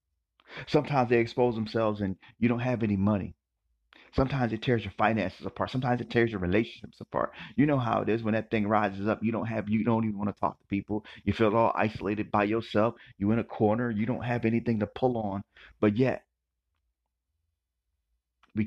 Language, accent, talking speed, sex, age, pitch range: English, American, 205 wpm, male, 40-59, 75-115 Hz